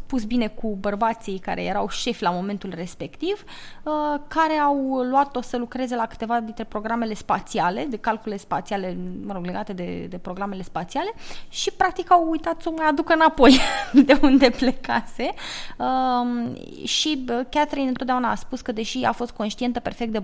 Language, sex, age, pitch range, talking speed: English, female, 20-39, 205-275 Hz, 160 wpm